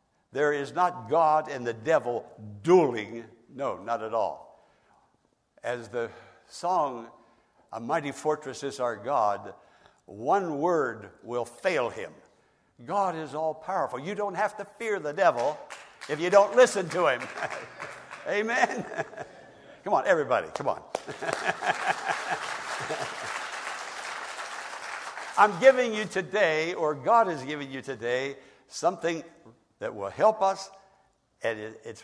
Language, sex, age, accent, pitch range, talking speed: English, male, 60-79, American, 135-195 Hz, 125 wpm